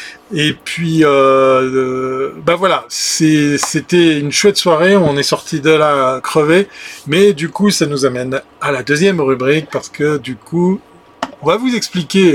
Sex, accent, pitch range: male, French, 135-175 Hz